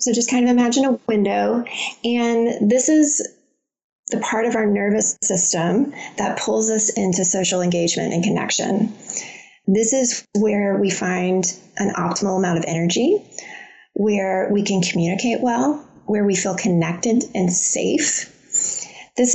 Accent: American